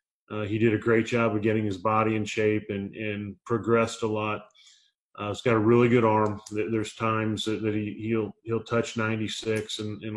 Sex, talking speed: male, 200 wpm